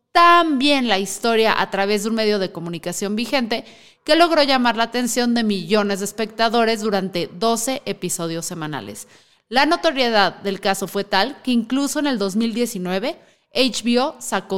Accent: Mexican